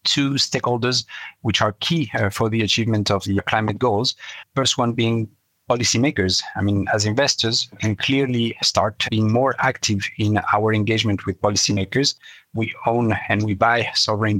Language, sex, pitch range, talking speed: English, male, 100-120 Hz, 165 wpm